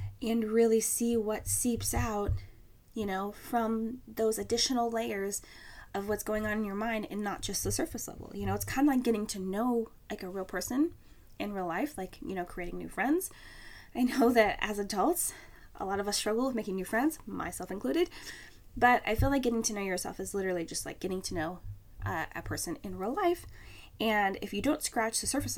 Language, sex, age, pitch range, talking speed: English, female, 20-39, 195-250 Hz, 215 wpm